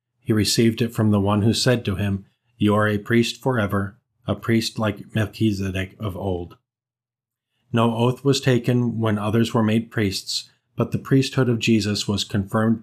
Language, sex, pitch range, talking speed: English, male, 105-125 Hz, 175 wpm